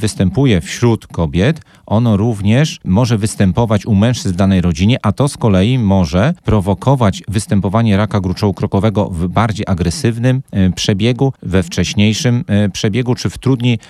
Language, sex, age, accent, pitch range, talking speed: Polish, male, 40-59, native, 95-120 Hz, 140 wpm